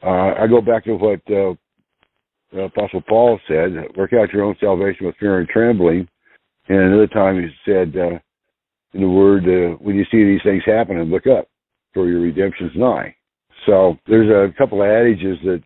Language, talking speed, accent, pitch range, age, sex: English, 185 wpm, American, 85-100 Hz, 60-79, male